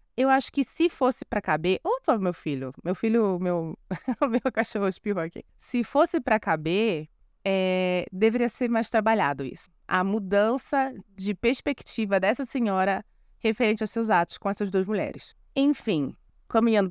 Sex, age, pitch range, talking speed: female, 20-39, 170-225 Hz, 155 wpm